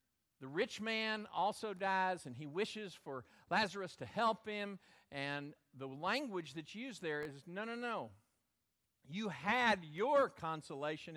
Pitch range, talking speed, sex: 140-215 Hz, 145 wpm, male